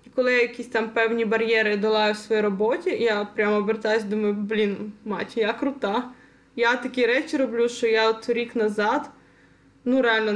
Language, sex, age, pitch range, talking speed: Ukrainian, female, 20-39, 220-255 Hz, 175 wpm